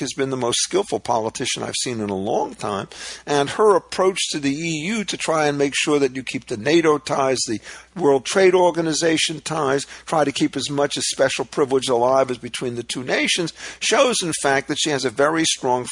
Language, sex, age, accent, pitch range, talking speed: English, male, 50-69, American, 130-160 Hz, 215 wpm